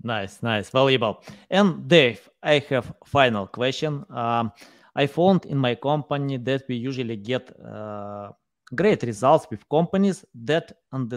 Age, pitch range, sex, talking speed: 20-39, 125-180 Hz, male, 140 wpm